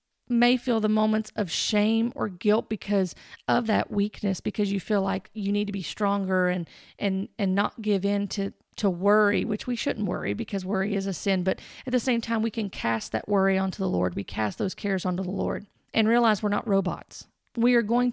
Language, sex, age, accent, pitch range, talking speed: English, female, 40-59, American, 195-235 Hz, 220 wpm